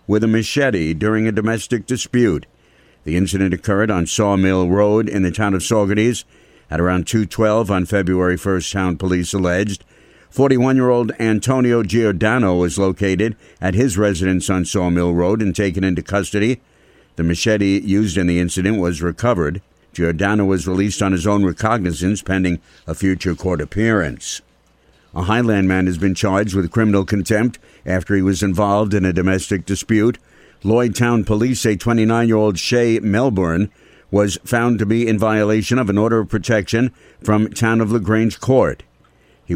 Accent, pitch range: American, 90-110 Hz